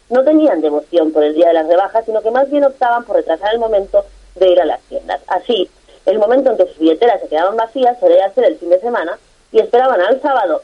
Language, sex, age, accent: English, female, 30-49, Spanish